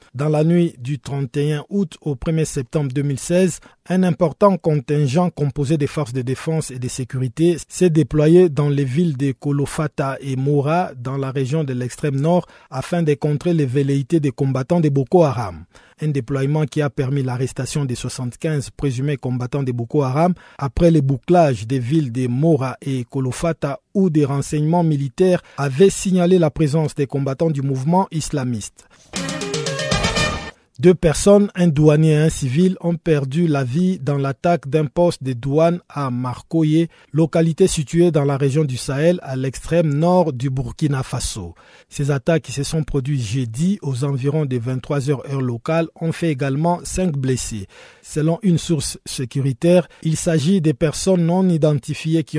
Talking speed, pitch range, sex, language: 165 wpm, 135-165 Hz, male, French